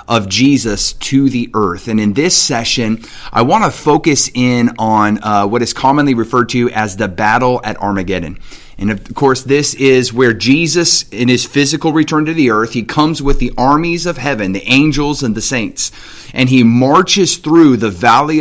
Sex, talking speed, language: male, 190 wpm, English